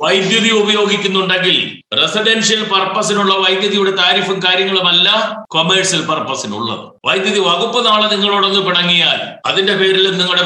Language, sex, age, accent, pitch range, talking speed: Malayalam, male, 60-79, native, 175-205 Hz, 100 wpm